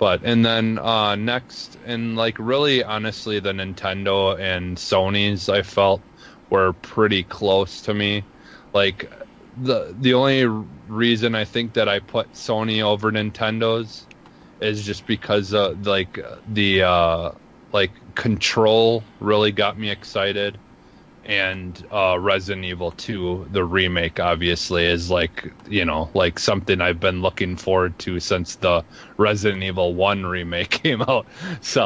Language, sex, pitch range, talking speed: English, male, 95-115 Hz, 140 wpm